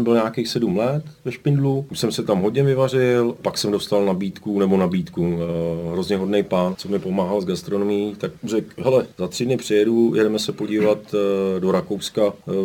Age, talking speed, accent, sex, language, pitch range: 40-59, 195 wpm, native, male, Czech, 95-125 Hz